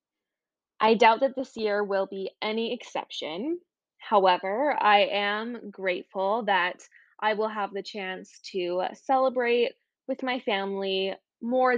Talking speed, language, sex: 125 wpm, English, female